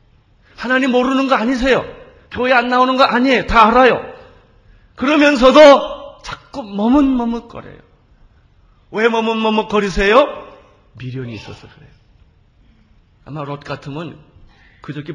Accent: native